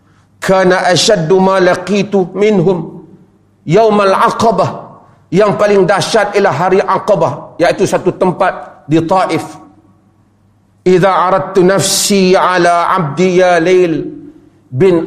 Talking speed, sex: 95 wpm, male